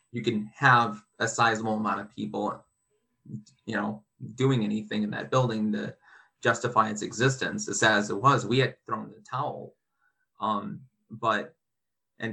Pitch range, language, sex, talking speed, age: 105-120 Hz, English, male, 150 wpm, 20-39